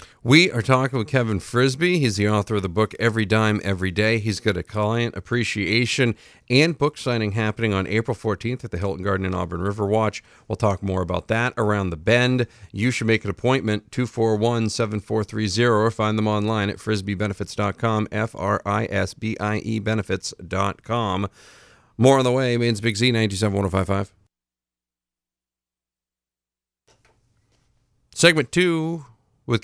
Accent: American